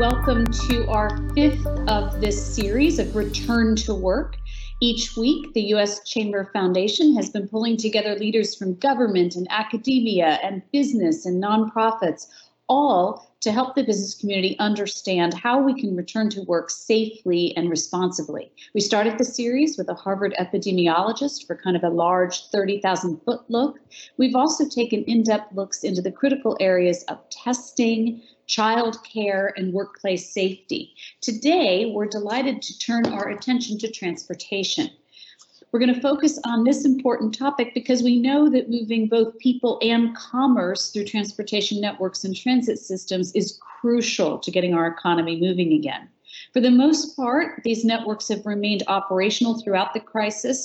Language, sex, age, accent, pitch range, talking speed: English, female, 40-59, American, 190-245 Hz, 155 wpm